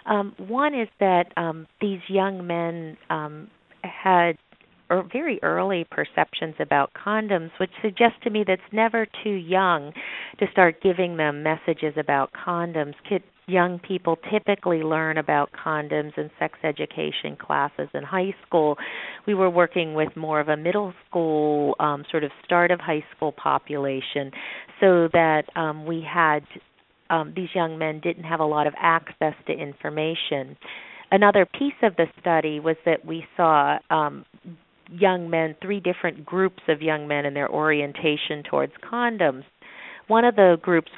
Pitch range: 150-185 Hz